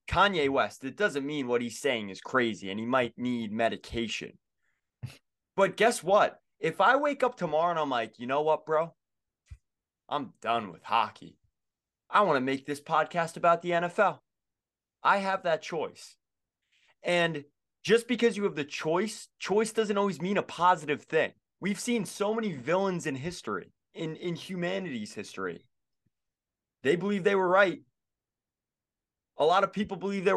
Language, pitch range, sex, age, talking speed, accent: English, 125-185 Hz, male, 20-39, 165 wpm, American